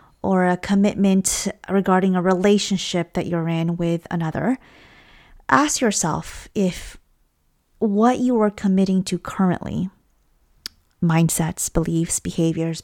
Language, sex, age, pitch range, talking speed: English, female, 30-49, 175-210 Hz, 110 wpm